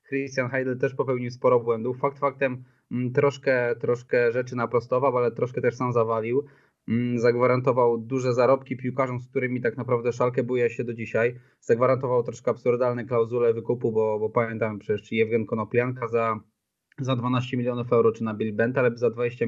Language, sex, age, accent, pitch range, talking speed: Polish, male, 20-39, native, 120-135 Hz, 165 wpm